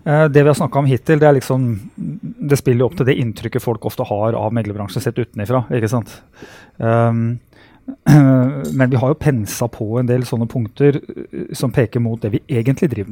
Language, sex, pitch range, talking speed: English, male, 120-155 Hz, 185 wpm